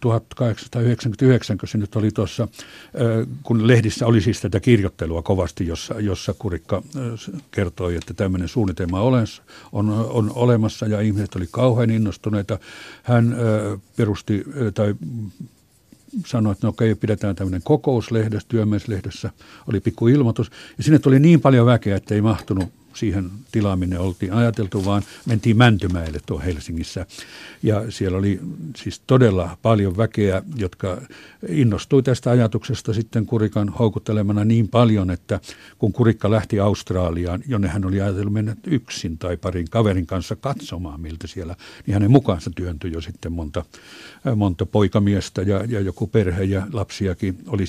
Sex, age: male, 60-79